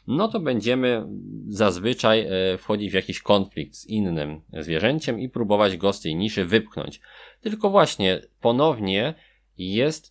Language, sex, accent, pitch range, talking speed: Polish, male, native, 95-130 Hz, 130 wpm